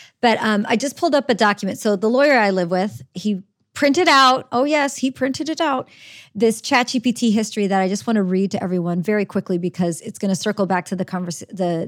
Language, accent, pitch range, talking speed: English, American, 190-240 Hz, 225 wpm